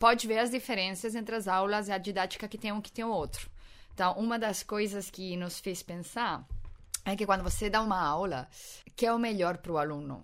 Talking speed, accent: 230 wpm, Brazilian